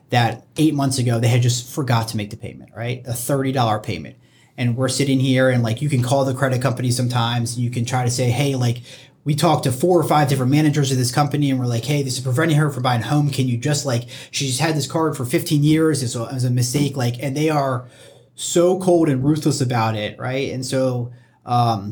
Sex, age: male, 30-49